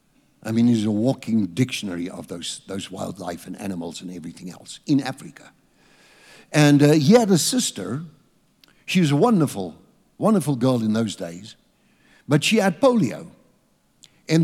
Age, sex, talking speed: 60-79, male, 155 wpm